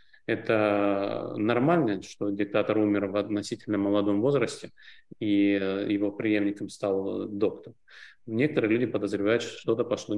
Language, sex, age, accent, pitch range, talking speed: Russian, male, 30-49, native, 105-135 Hz, 120 wpm